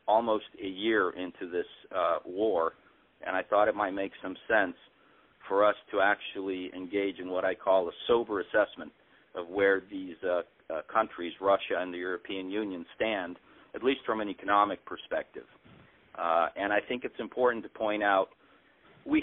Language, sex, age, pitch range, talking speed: English, male, 40-59, 95-115 Hz, 170 wpm